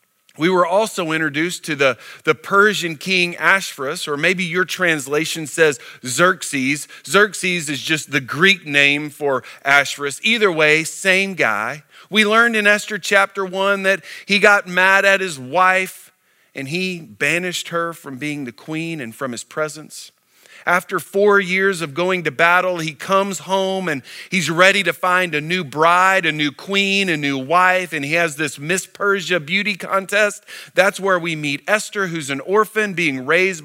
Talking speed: 170 wpm